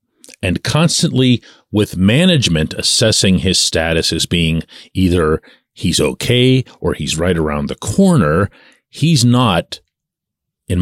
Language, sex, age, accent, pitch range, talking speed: English, male, 40-59, American, 90-130 Hz, 115 wpm